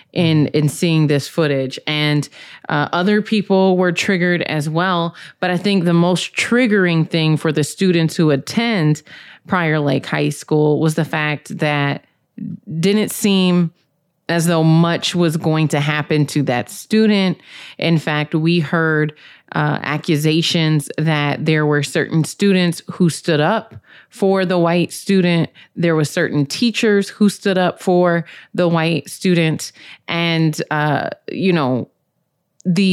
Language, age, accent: English, 30-49, American